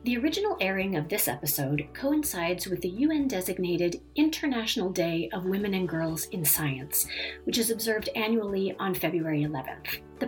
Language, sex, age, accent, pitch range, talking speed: English, female, 40-59, American, 180-230 Hz, 150 wpm